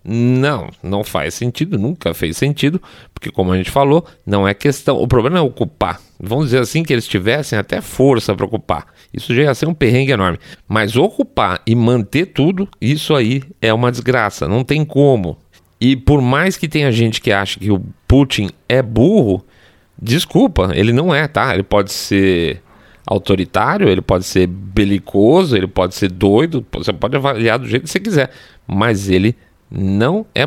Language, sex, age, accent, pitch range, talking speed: Portuguese, male, 40-59, Brazilian, 100-130 Hz, 180 wpm